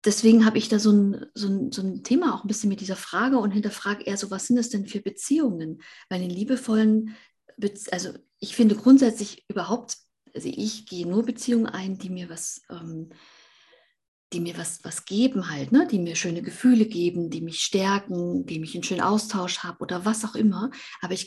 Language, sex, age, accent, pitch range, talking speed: German, female, 50-69, German, 175-220 Hz, 205 wpm